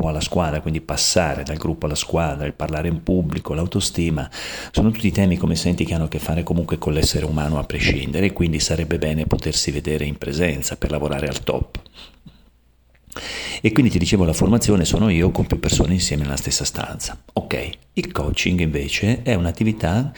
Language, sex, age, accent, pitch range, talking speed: Italian, male, 40-59, native, 80-105 Hz, 180 wpm